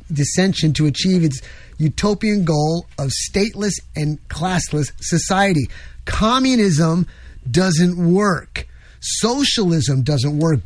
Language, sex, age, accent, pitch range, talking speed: English, male, 30-49, American, 145-190 Hz, 95 wpm